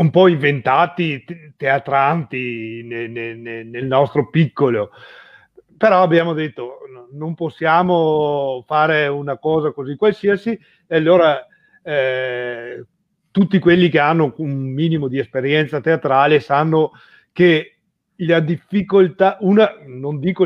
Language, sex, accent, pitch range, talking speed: Italian, male, native, 140-180 Hz, 105 wpm